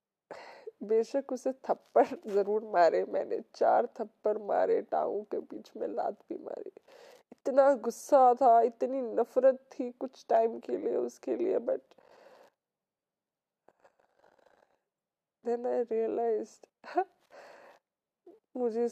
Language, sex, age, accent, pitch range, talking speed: Hindi, female, 20-39, native, 235-335 Hz, 50 wpm